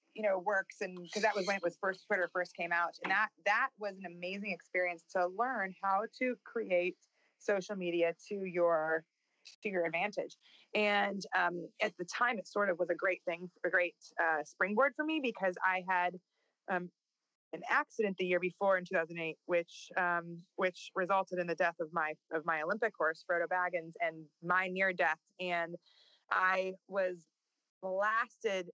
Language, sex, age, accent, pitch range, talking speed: English, female, 20-39, American, 170-200 Hz, 180 wpm